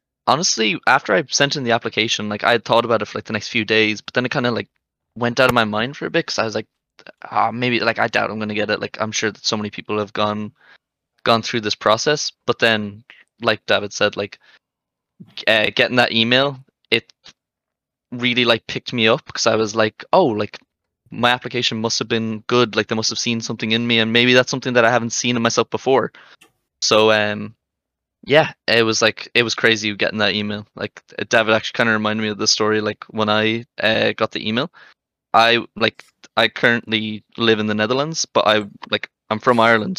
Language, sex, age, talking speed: English, male, 10-29, 225 wpm